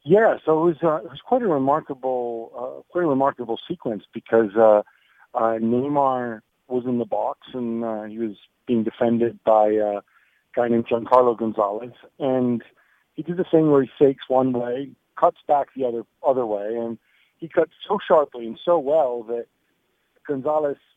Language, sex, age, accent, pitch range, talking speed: English, male, 50-69, American, 120-150 Hz, 175 wpm